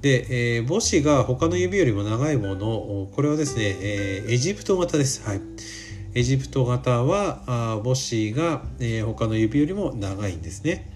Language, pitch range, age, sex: Japanese, 100-155 Hz, 40-59, male